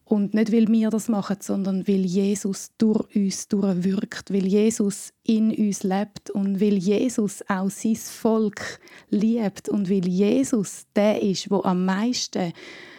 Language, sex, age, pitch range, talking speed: German, female, 30-49, 195-220 Hz, 150 wpm